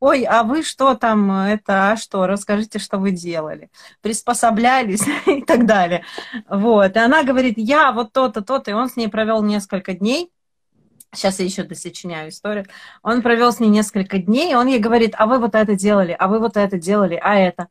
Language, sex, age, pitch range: Russian, female, 30-49, 200-245 Hz